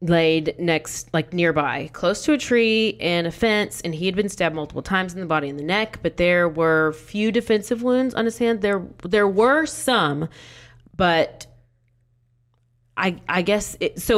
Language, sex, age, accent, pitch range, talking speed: English, female, 30-49, American, 150-190 Hz, 180 wpm